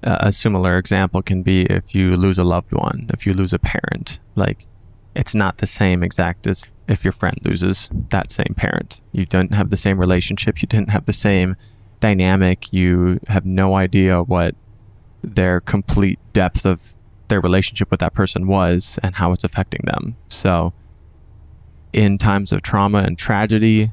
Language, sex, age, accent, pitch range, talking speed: English, male, 20-39, American, 90-105 Hz, 175 wpm